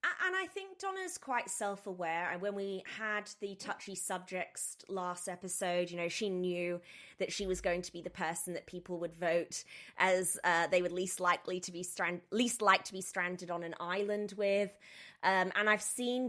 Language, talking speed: English, 195 wpm